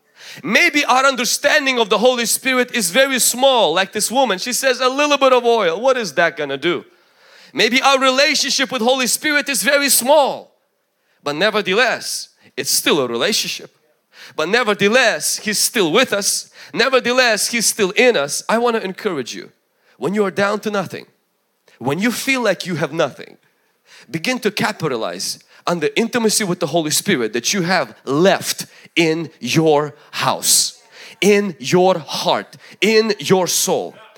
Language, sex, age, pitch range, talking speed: English, male, 30-49, 205-265 Hz, 160 wpm